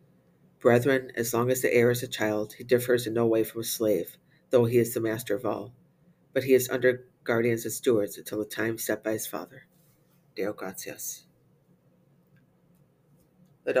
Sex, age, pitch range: female, 40-59, 115-140 Hz